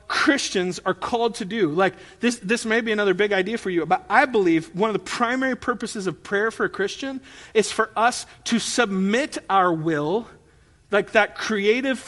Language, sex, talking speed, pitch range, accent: English, male, 190 wpm, 165-225 Hz, American